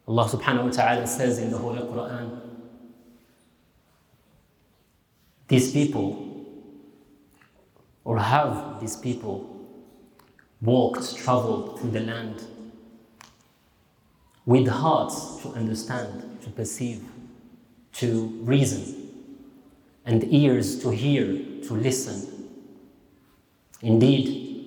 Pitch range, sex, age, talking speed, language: 110-135 Hz, male, 30-49, 85 wpm, English